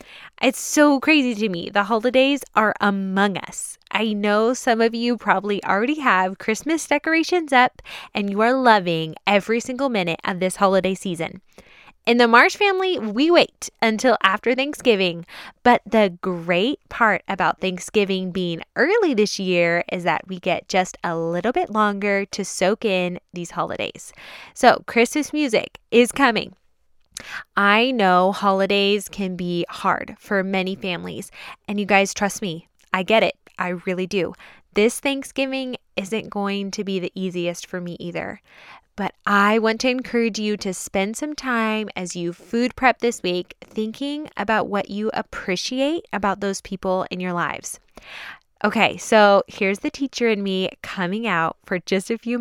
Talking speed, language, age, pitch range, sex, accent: 160 wpm, English, 10-29, 185-240 Hz, female, American